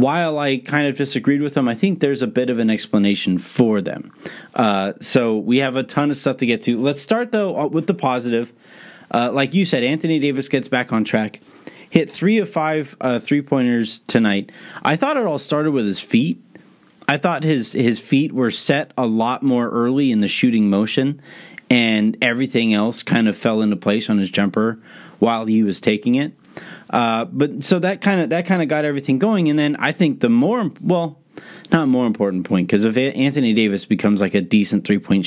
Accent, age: American, 30-49